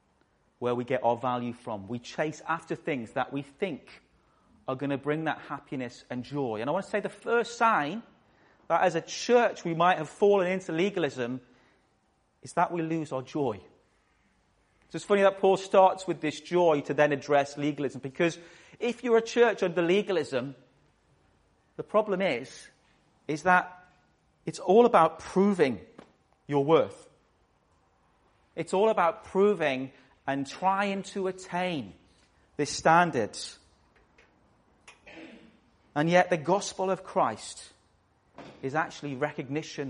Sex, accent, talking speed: male, British, 145 wpm